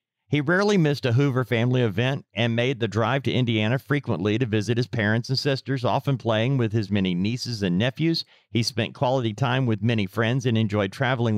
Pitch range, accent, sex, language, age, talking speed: 110-135 Hz, American, male, English, 50-69, 200 wpm